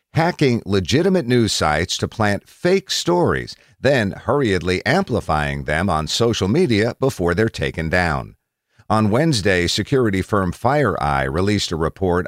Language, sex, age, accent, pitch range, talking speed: English, male, 50-69, American, 90-130 Hz, 130 wpm